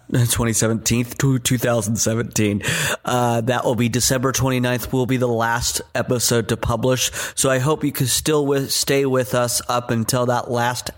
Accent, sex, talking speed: American, male, 165 wpm